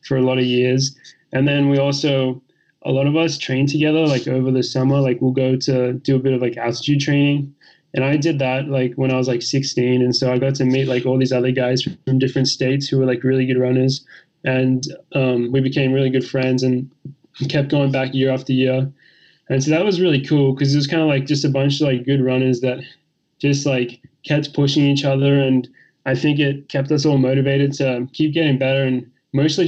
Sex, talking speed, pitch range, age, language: male, 230 wpm, 125-140 Hz, 20-39, English